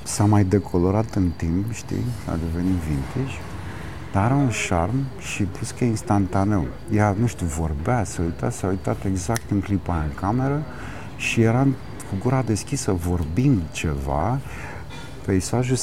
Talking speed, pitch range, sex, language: 150 wpm, 85-115 Hz, male, Romanian